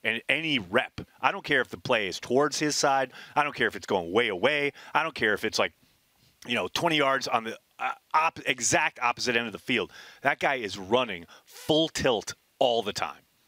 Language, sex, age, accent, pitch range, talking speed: English, male, 30-49, American, 115-145 Hz, 220 wpm